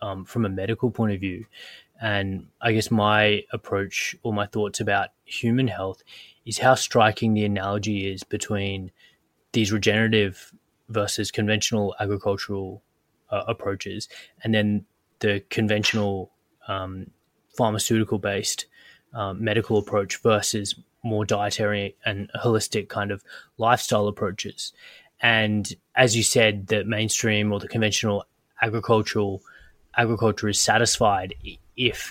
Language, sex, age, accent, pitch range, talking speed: English, male, 20-39, Australian, 100-115 Hz, 120 wpm